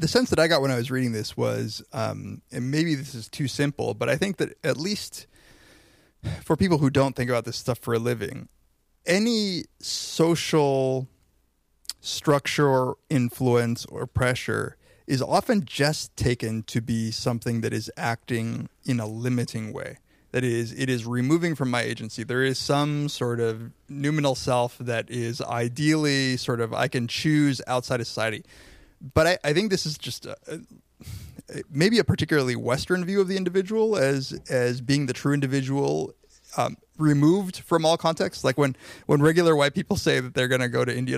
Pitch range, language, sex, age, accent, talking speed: 120-155 Hz, English, male, 20-39, American, 180 wpm